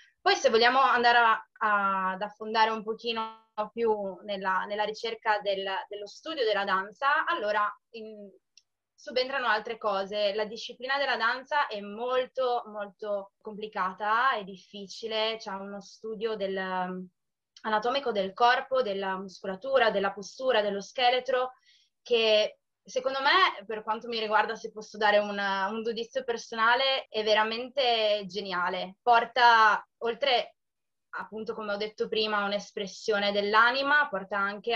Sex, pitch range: female, 200-235 Hz